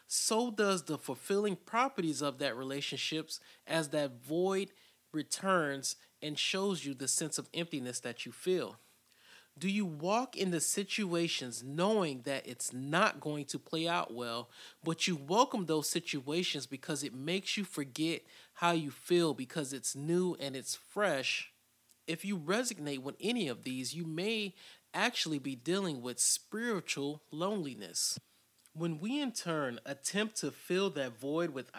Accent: American